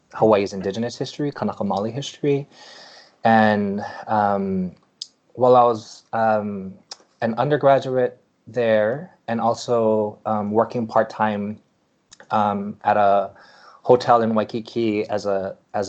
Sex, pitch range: male, 100-125 Hz